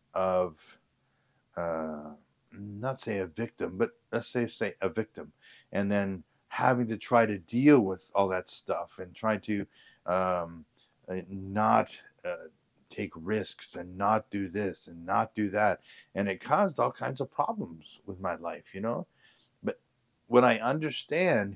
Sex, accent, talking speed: male, American, 155 wpm